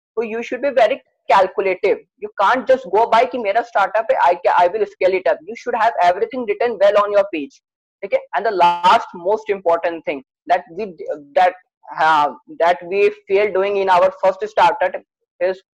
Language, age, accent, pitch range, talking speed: English, 20-39, Indian, 185-250 Hz, 185 wpm